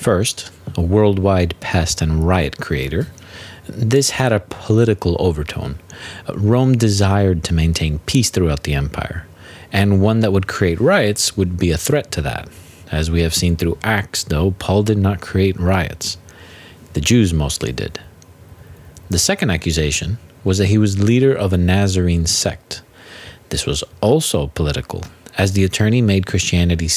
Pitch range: 85-110 Hz